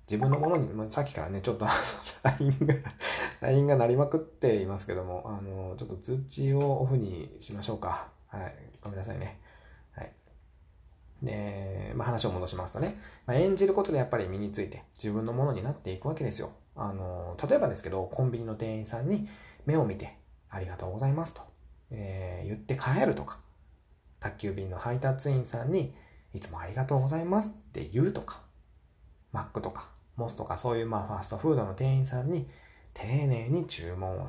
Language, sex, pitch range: Japanese, male, 95-140 Hz